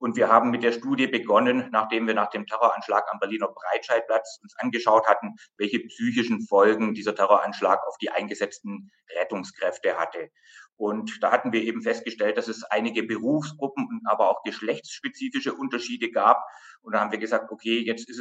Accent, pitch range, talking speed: German, 110-155 Hz, 170 wpm